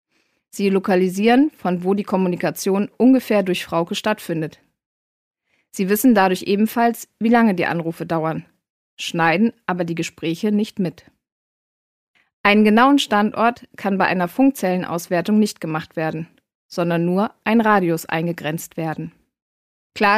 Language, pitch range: German, 175-220 Hz